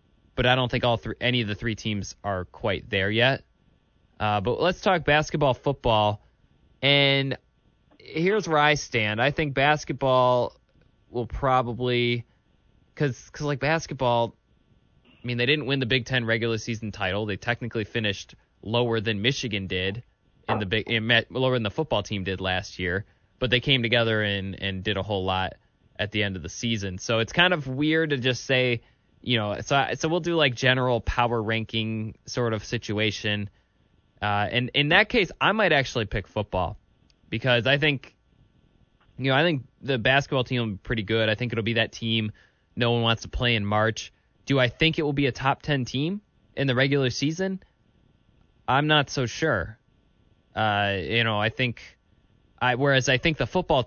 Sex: male